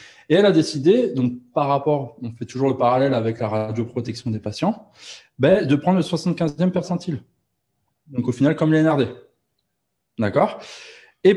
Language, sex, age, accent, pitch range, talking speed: French, male, 20-39, French, 115-140 Hz, 160 wpm